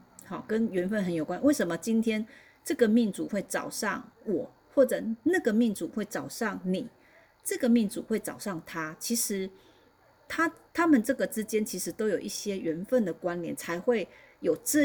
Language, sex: Chinese, female